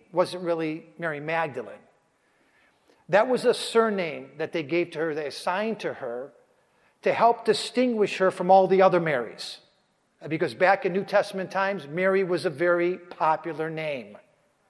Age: 50-69